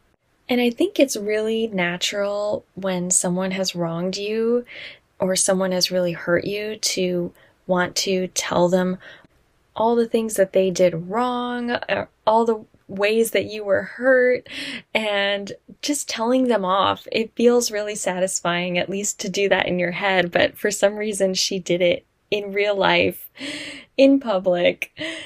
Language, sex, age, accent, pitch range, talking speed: English, female, 20-39, American, 180-225 Hz, 155 wpm